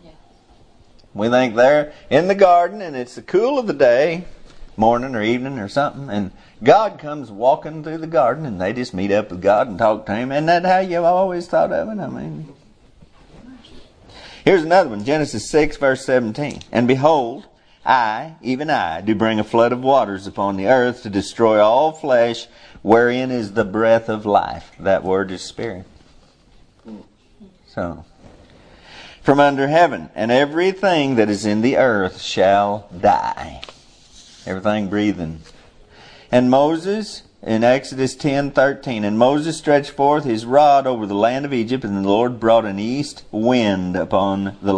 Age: 50-69